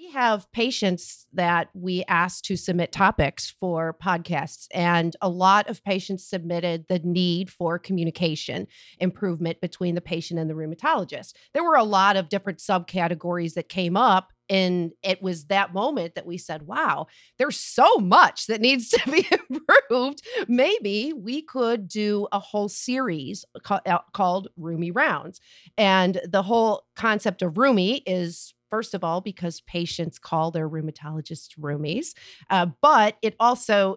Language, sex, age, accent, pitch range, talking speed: English, female, 40-59, American, 170-210 Hz, 155 wpm